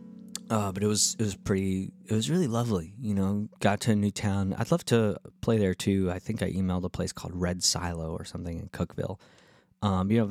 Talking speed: 235 wpm